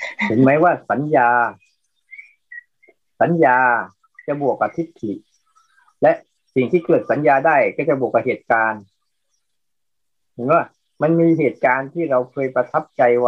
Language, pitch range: Thai, 120-185 Hz